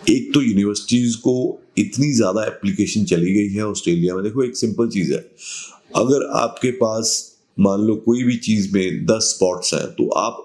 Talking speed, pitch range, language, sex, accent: 180 wpm, 95-120 Hz, Hindi, male, native